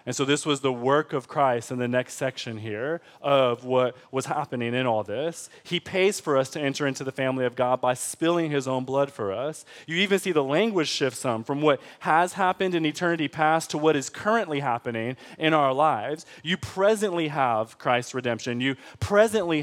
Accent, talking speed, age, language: American, 205 wpm, 20-39, English